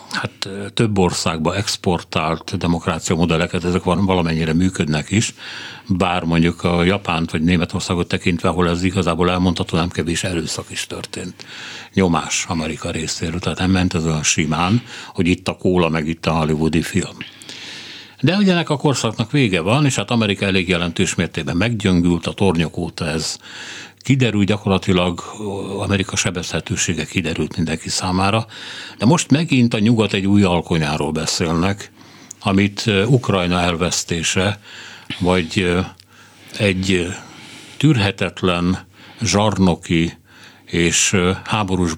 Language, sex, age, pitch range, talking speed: Hungarian, male, 60-79, 85-100 Hz, 125 wpm